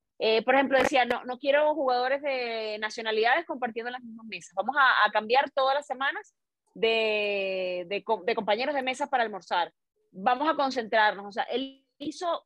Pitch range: 220-290 Hz